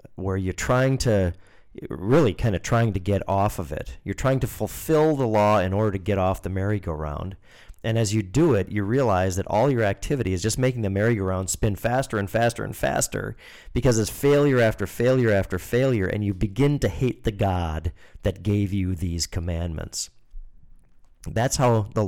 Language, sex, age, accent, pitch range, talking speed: English, male, 40-59, American, 95-130 Hz, 190 wpm